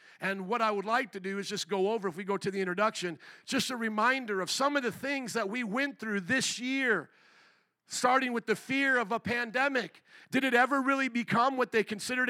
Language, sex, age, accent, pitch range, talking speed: English, male, 50-69, American, 215-260 Hz, 225 wpm